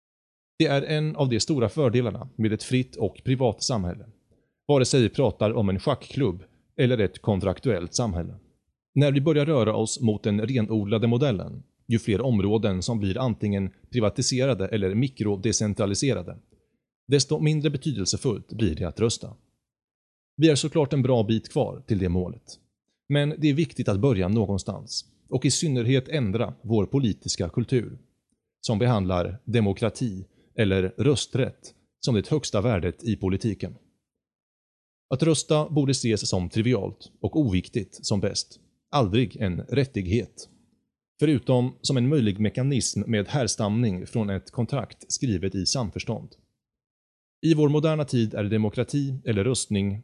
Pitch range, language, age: 100-135 Hz, Swedish, 30-49